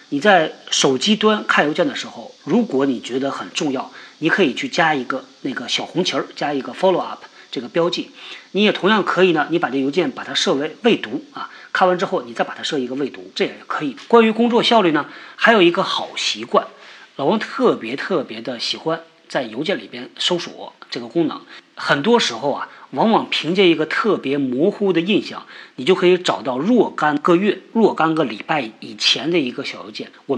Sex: male